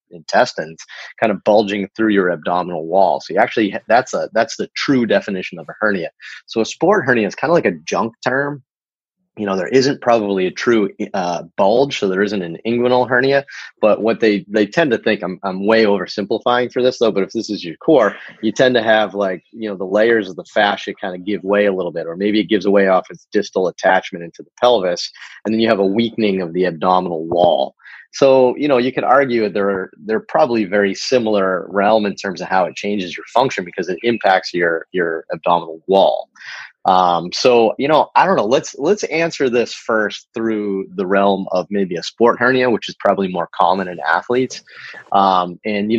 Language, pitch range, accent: English, 95-115 Hz, American